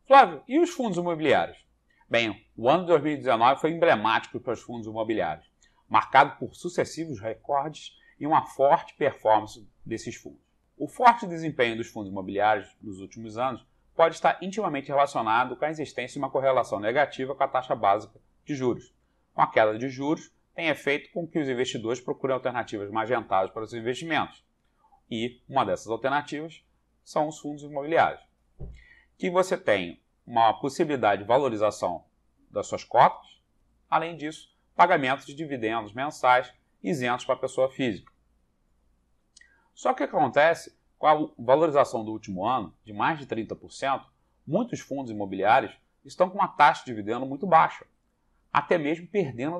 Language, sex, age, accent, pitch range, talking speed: Portuguese, male, 30-49, Brazilian, 115-160 Hz, 155 wpm